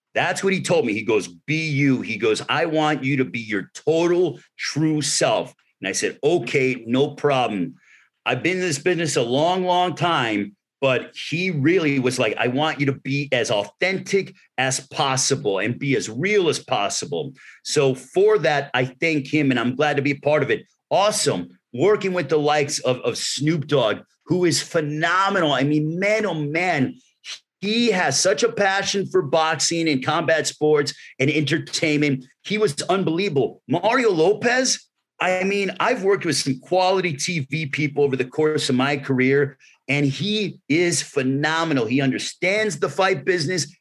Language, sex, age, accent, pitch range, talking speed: English, male, 40-59, American, 140-185 Hz, 175 wpm